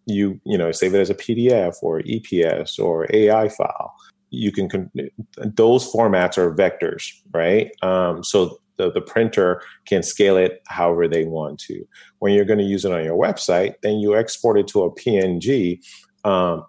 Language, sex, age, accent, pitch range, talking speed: English, male, 30-49, American, 85-105 Hz, 180 wpm